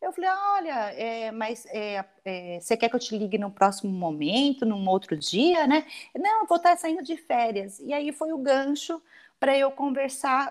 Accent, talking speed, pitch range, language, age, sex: Brazilian, 195 wpm, 225-310 Hz, Portuguese, 40-59, female